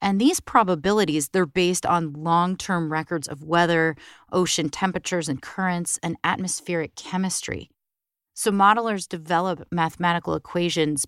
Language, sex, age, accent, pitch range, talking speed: English, female, 30-49, American, 160-190 Hz, 120 wpm